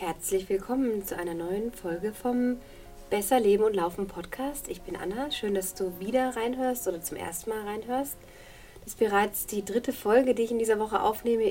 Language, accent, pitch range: German, German, 180-215 Hz